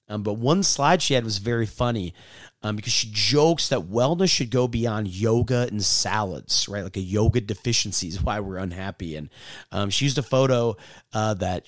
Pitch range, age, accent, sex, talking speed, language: 105-130 Hz, 30-49, American, male, 195 wpm, English